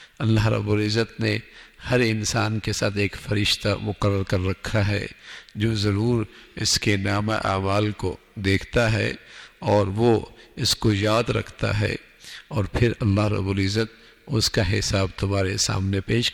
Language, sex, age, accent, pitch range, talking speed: English, male, 50-69, Indian, 105-120 Hz, 150 wpm